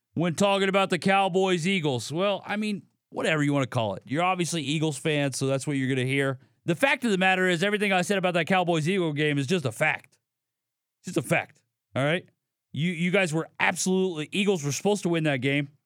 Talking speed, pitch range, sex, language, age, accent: 220 wpm, 130-175 Hz, male, English, 40-59, American